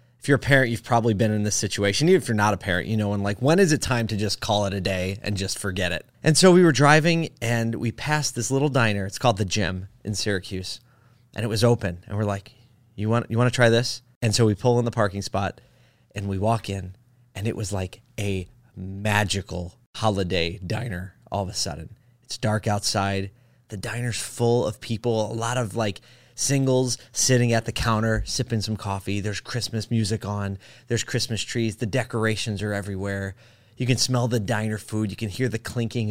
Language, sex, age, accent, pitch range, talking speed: English, male, 30-49, American, 100-120 Hz, 220 wpm